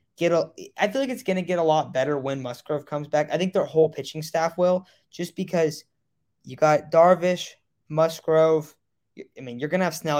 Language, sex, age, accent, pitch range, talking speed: English, male, 20-39, American, 140-180 Hz, 195 wpm